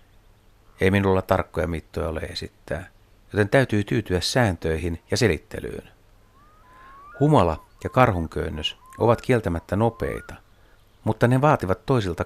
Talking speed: 110 wpm